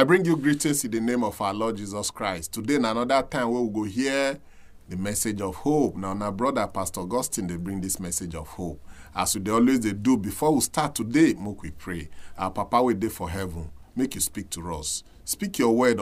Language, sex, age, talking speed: English, male, 40-59, 230 wpm